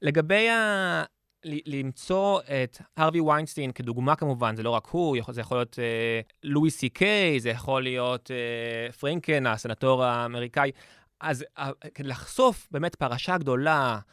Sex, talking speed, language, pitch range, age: male, 130 wpm, Hebrew, 135-185 Hz, 20-39